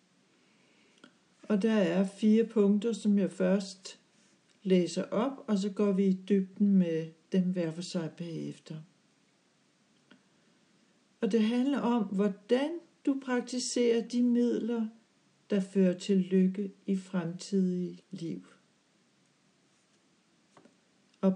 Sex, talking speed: female, 110 wpm